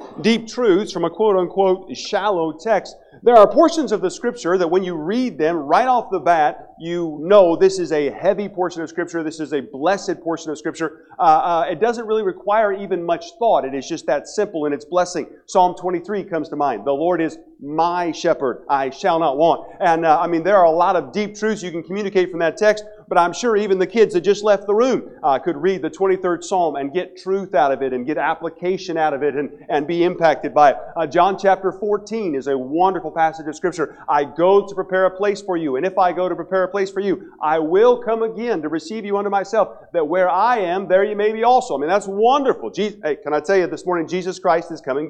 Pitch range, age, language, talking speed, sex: 165-210 Hz, 40-59, English, 240 wpm, male